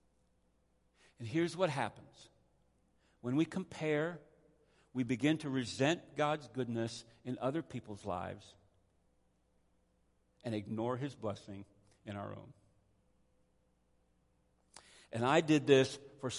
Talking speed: 105 wpm